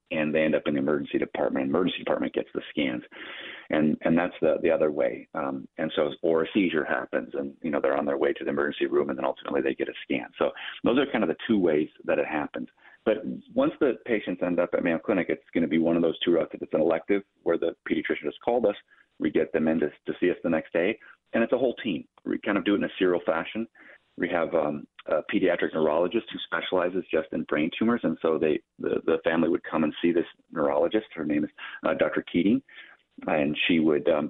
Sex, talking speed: male, 245 wpm